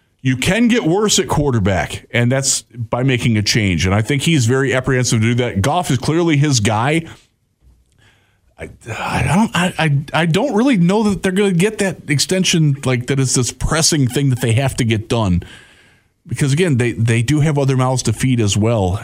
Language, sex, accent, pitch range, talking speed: English, male, American, 110-150 Hz, 205 wpm